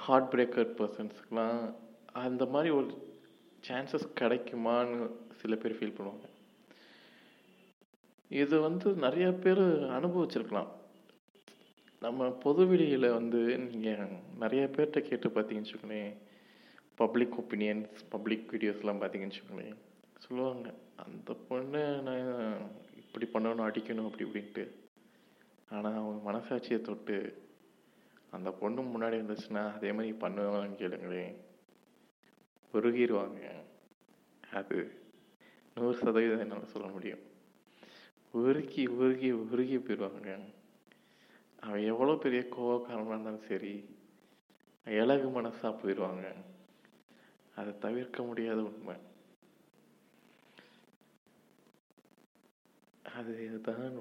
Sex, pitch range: male, 110-130 Hz